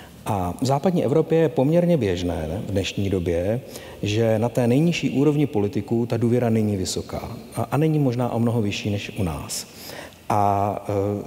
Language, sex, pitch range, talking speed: Czech, male, 105-135 Hz, 160 wpm